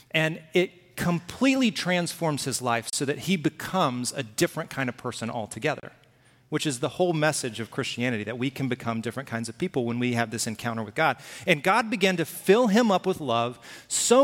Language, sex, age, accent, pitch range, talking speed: English, male, 40-59, American, 120-170 Hz, 200 wpm